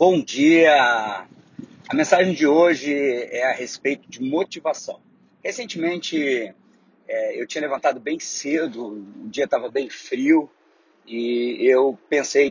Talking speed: 125 wpm